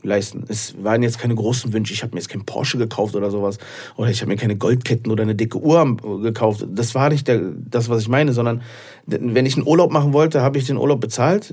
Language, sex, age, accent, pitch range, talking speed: German, male, 40-59, German, 115-130 Hz, 240 wpm